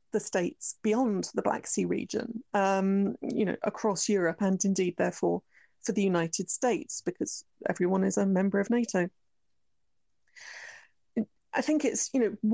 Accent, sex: British, female